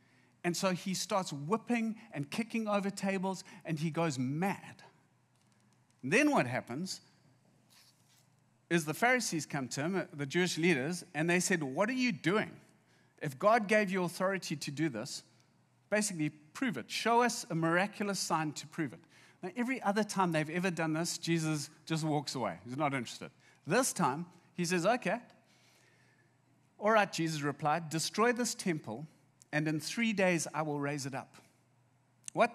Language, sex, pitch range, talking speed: English, male, 135-195 Hz, 165 wpm